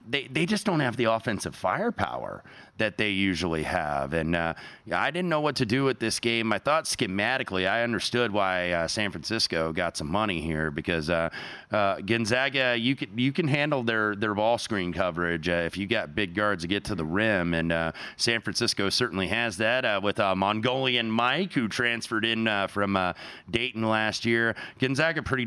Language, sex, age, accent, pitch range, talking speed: English, male, 30-49, American, 90-125 Hz, 200 wpm